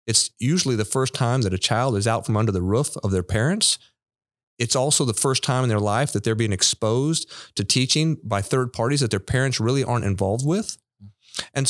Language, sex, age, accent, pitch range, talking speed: English, male, 40-59, American, 110-140 Hz, 215 wpm